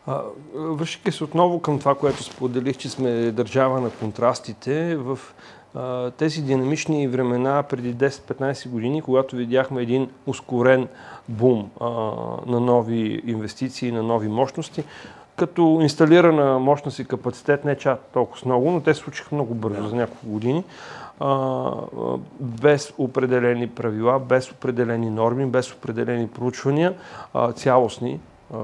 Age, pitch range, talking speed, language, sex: 40-59, 120-145 Hz, 120 wpm, Bulgarian, male